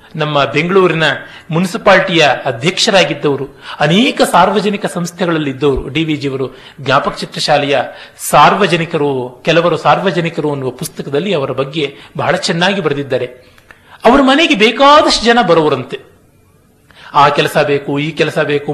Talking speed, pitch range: 110 wpm, 145-195 Hz